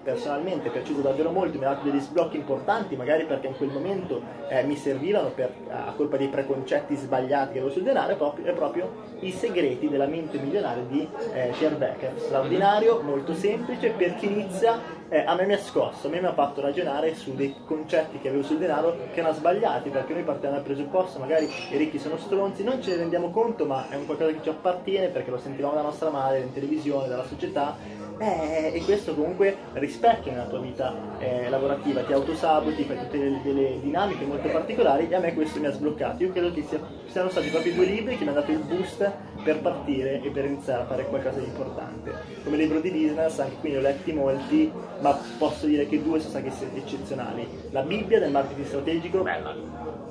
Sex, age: male, 20-39